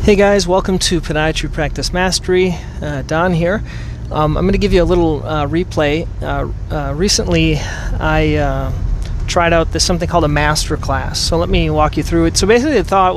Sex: male